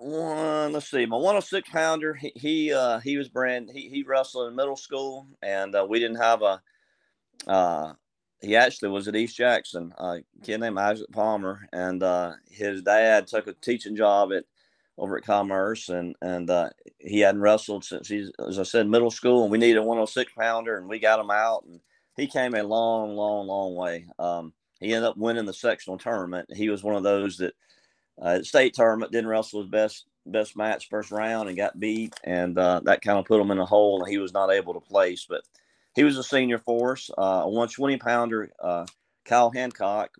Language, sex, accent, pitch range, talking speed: English, male, American, 95-120 Hz, 205 wpm